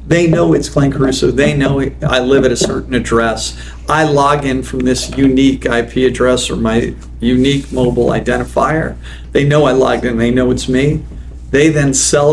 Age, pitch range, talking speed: 50-69, 110-135 Hz, 185 wpm